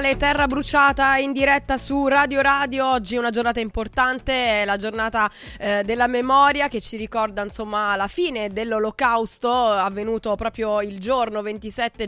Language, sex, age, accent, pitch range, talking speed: Italian, female, 20-39, native, 205-235 Hz, 150 wpm